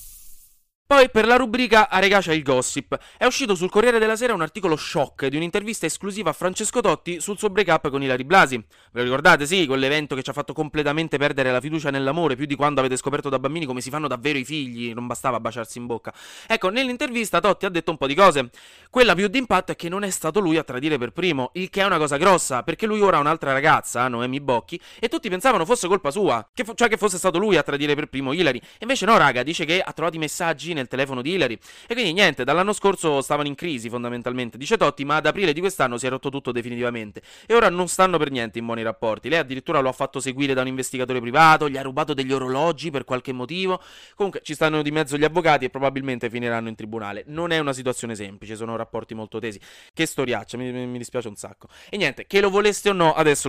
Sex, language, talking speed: male, Italian, 240 wpm